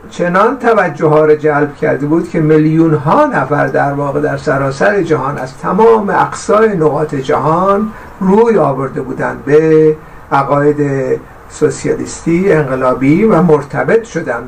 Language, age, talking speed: Persian, 60-79, 130 wpm